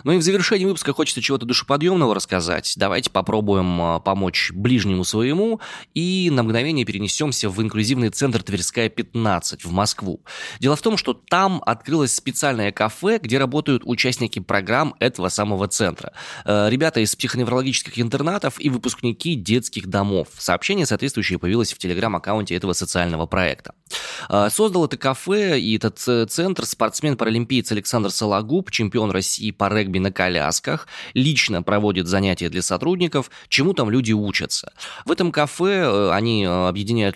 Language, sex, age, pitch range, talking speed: Russian, male, 20-39, 95-135 Hz, 135 wpm